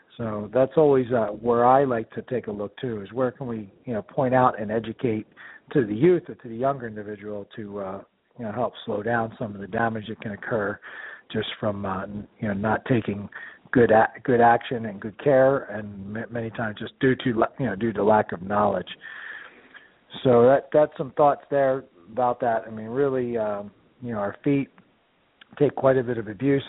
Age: 40-59